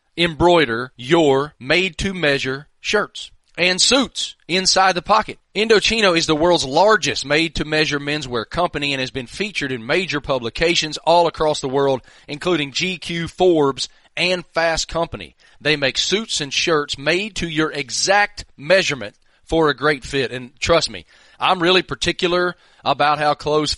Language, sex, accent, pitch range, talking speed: English, male, American, 140-175 Hz, 145 wpm